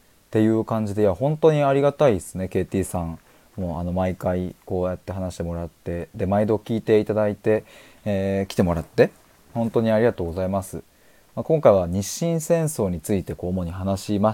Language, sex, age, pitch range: Japanese, male, 20-39, 90-135 Hz